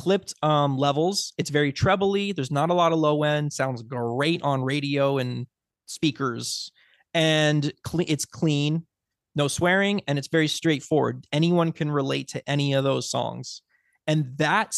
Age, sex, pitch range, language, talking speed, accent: 20-39, male, 140-175 Hz, English, 155 wpm, American